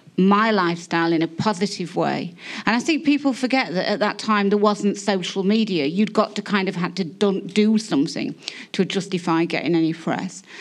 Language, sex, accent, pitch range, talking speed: English, female, British, 170-210 Hz, 185 wpm